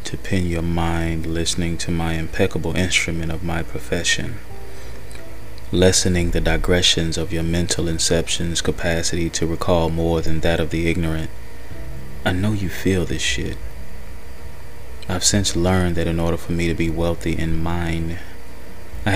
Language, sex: English, male